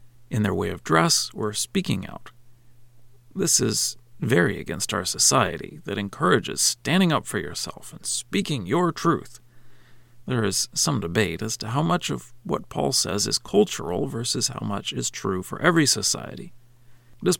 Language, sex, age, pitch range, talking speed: English, male, 40-59, 115-135 Hz, 160 wpm